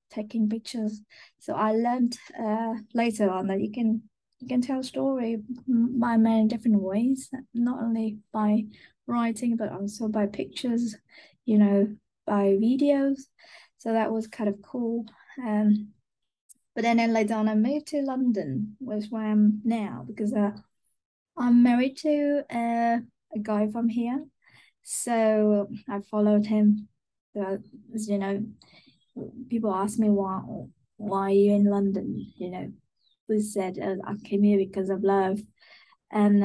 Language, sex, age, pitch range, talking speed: English, female, 20-39, 205-235 Hz, 150 wpm